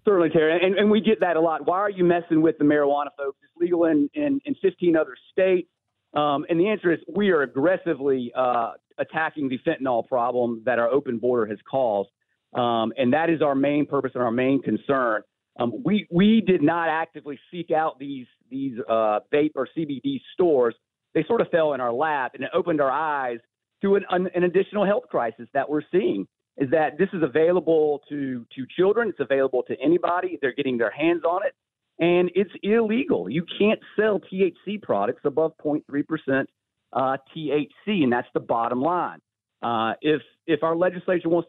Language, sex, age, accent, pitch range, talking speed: English, male, 40-59, American, 135-185 Hz, 190 wpm